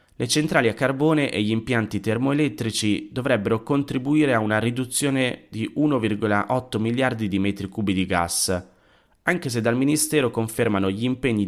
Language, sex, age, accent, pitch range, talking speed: Italian, male, 30-49, native, 100-125 Hz, 145 wpm